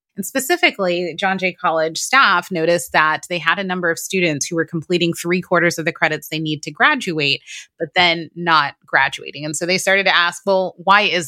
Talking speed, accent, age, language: 210 wpm, American, 30-49, English